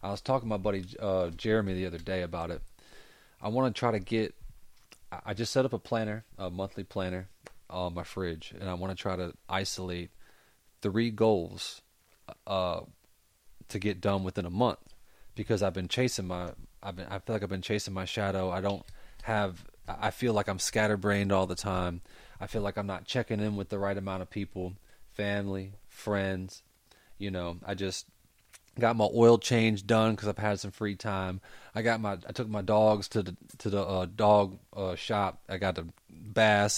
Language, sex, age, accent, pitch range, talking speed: English, male, 30-49, American, 95-110 Hz, 195 wpm